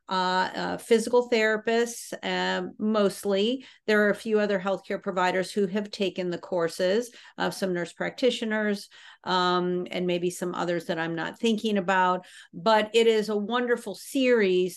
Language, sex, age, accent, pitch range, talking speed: English, female, 50-69, American, 180-225 Hz, 155 wpm